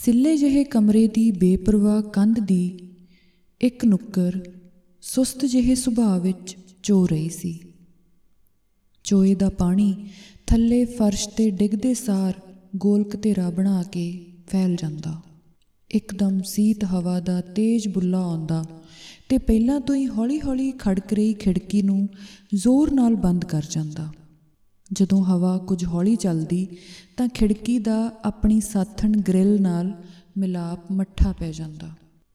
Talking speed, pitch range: 110 wpm, 175-210 Hz